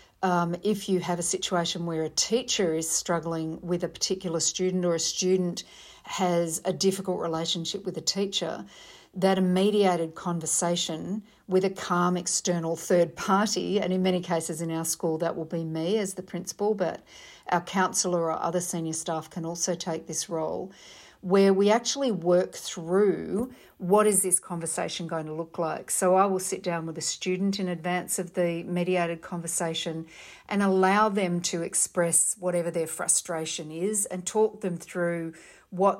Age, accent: 50-69, Australian